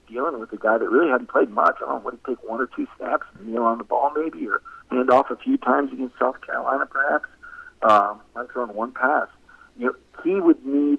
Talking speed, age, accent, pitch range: 250 wpm, 40-59, American, 110-140 Hz